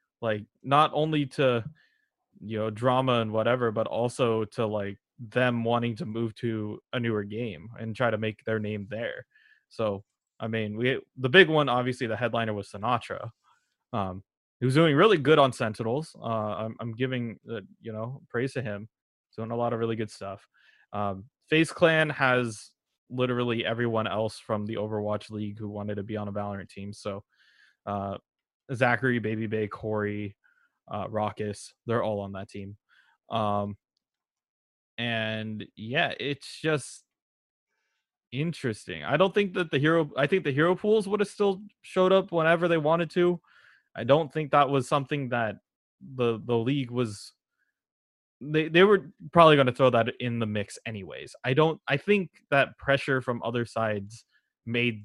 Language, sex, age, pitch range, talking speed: English, male, 20-39, 110-140 Hz, 170 wpm